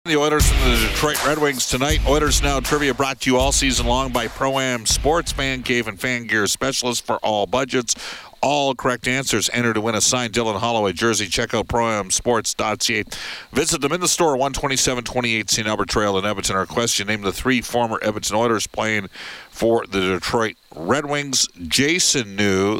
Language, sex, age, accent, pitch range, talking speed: English, male, 50-69, American, 100-130 Hz, 185 wpm